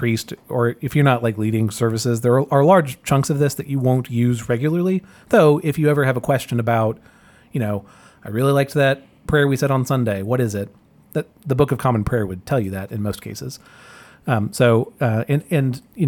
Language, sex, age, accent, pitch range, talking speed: English, male, 30-49, American, 110-140 Hz, 225 wpm